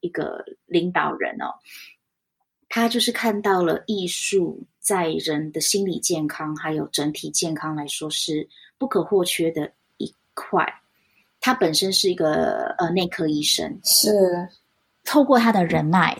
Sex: female